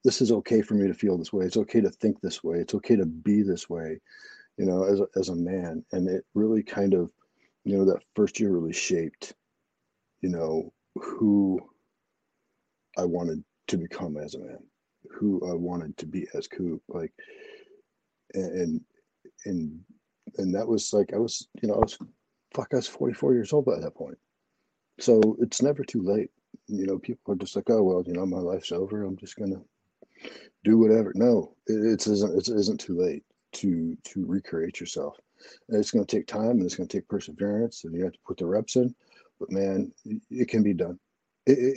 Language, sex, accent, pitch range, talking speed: English, male, American, 95-115 Hz, 200 wpm